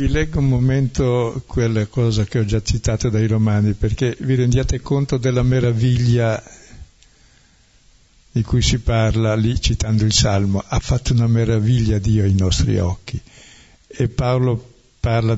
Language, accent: Italian, native